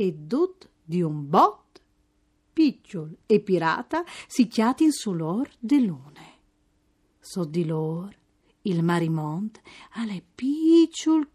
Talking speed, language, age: 110 wpm, Italian, 40-59